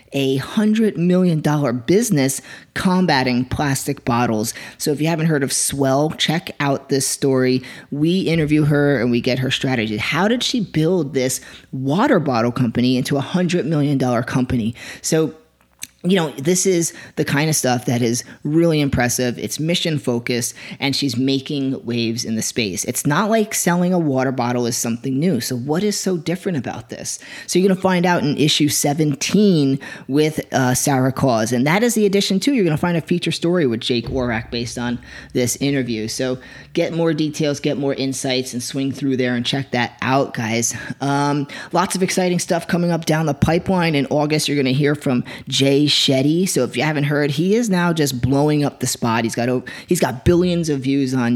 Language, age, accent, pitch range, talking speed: English, 30-49, American, 125-165 Hz, 195 wpm